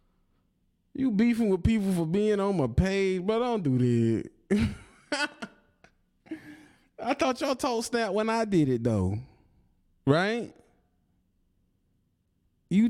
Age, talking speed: 20-39, 115 wpm